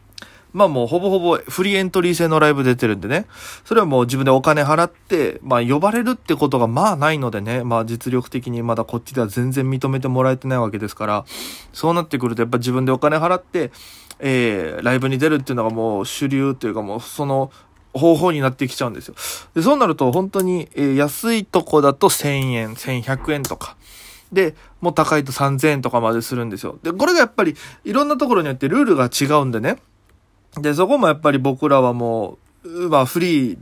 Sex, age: male, 20-39